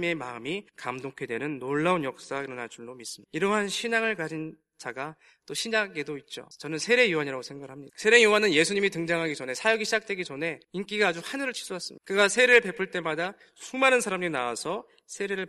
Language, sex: Korean, male